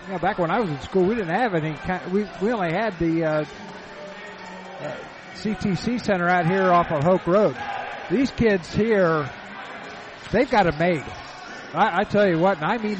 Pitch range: 165-210 Hz